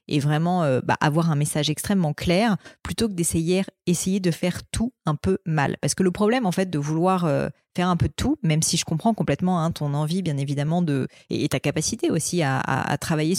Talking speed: 235 wpm